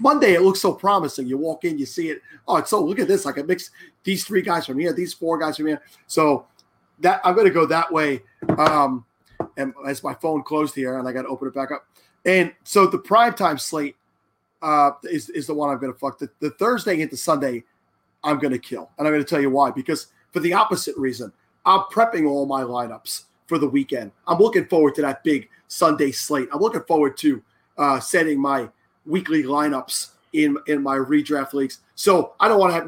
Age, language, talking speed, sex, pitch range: 30-49, English, 230 wpm, male, 135-165 Hz